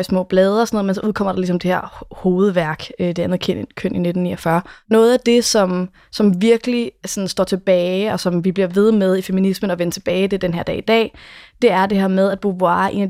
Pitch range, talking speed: 185-220 Hz, 250 wpm